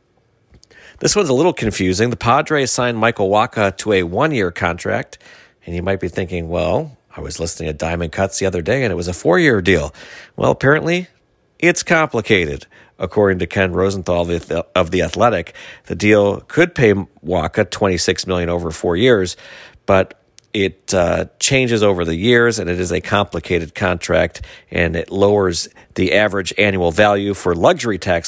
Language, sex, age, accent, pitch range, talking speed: English, male, 40-59, American, 90-115 Hz, 170 wpm